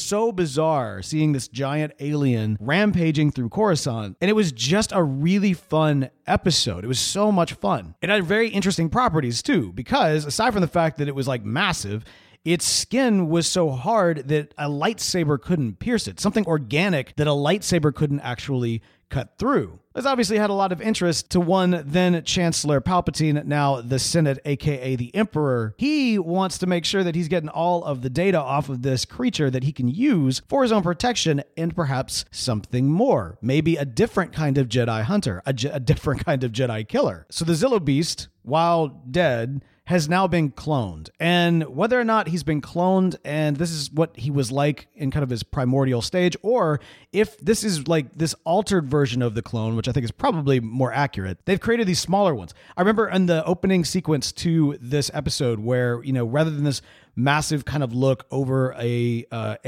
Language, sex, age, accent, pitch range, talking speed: English, male, 30-49, American, 130-180 Hz, 195 wpm